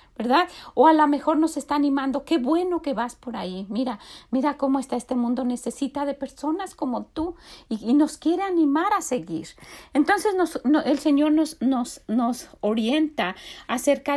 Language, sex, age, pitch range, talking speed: Spanish, female, 40-59, 225-305 Hz, 170 wpm